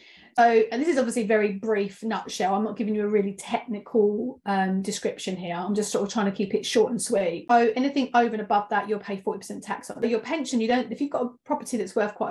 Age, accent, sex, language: 30-49, British, female, English